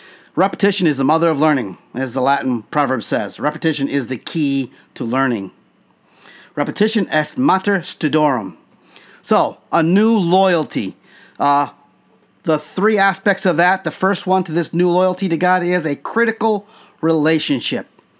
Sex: male